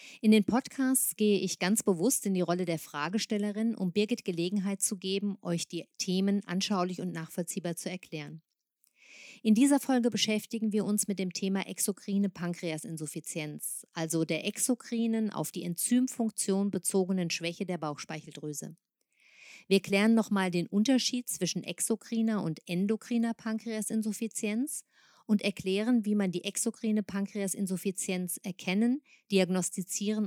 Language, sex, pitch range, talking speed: German, female, 180-220 Hz, 130 wpm